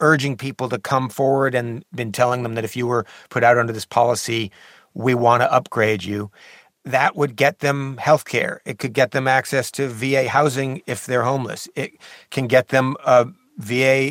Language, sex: English, male